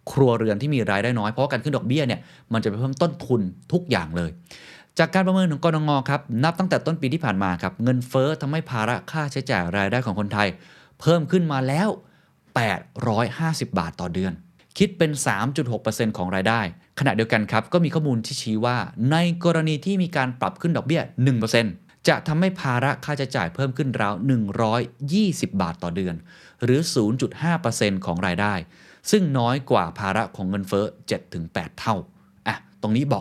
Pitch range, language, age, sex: 100-150 Hz, Thai, 30-49, male